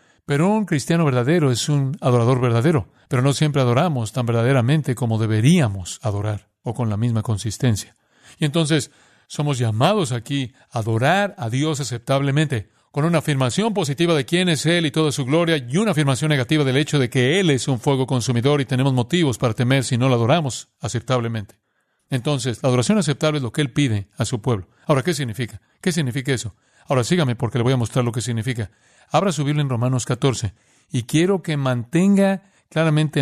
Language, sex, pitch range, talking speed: Spanish, male, 120-155 Hz, 190 wpm